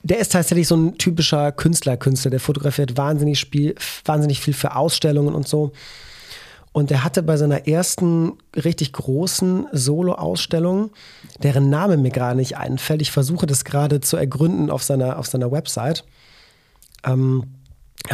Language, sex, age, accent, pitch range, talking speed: German, male, 40-59, German, 140-165 Hz, 150 wpm